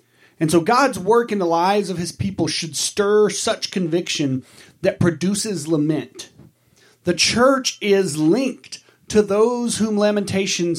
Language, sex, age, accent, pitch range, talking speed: English, male, 40-59, American, 150-205 Hz, 140 wpm